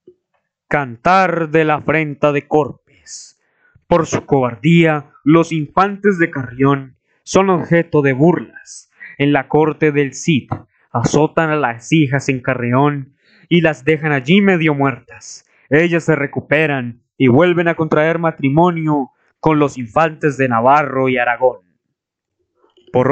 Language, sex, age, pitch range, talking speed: Spanish, male, 20-39, 140-190 Hz, 130 wpm